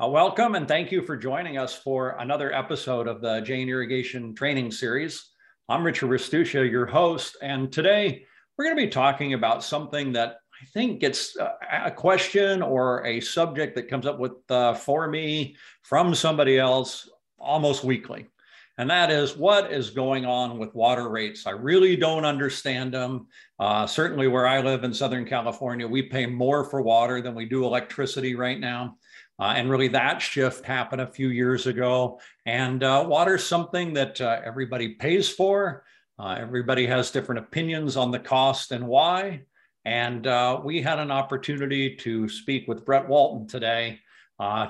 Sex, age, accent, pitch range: male, 50-69, American, 125-155 Hz